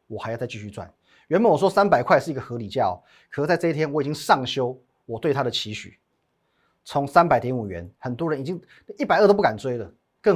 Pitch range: 105-155 Hz